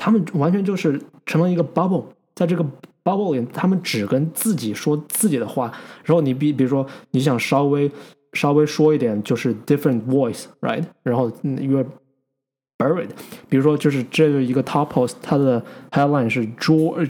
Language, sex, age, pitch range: Chinese, male, 20-39, 125-160 Hz